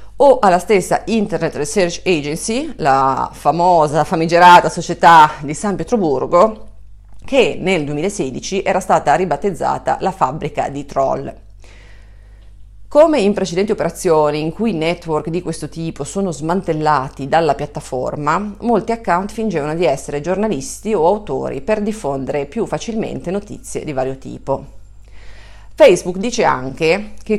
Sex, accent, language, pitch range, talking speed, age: female, native, Italian, 140-200 Hz, 125 wpm, 40-59